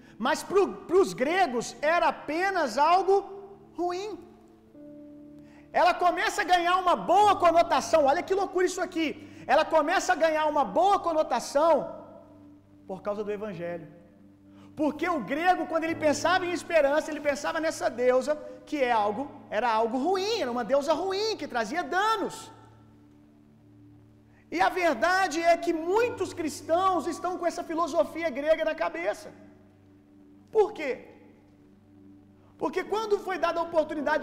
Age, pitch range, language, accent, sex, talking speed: 40-59, 235-340 Hz, Gujarati, Brazilian, male, 135 wpm